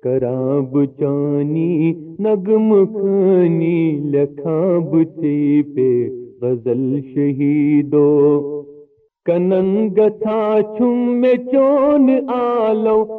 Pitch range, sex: 145-220 Hz, male